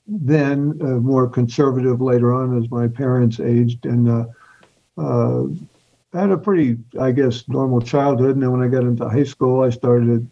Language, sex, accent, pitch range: English, male, American, 115-135 Hz